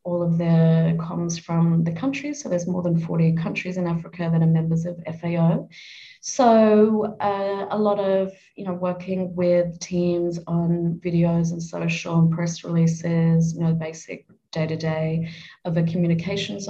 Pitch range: 165-185 Hz